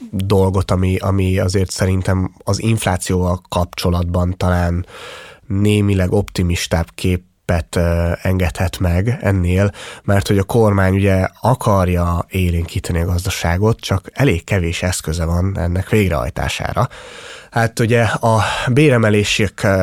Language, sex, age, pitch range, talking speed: Hungarian, male, 30-49, 90-105 Hz, 105 wpm